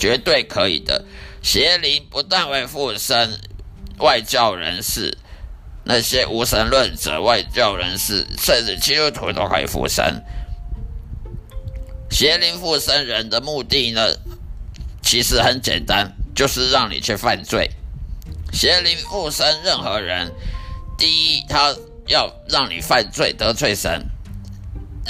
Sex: male